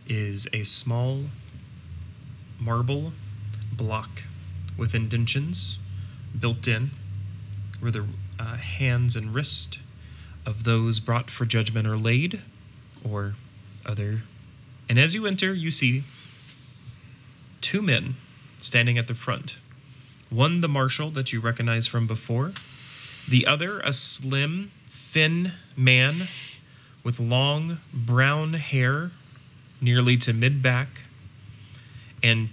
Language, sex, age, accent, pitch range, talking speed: English, male, 30-49, American, 115-135 Hz, 105 wpm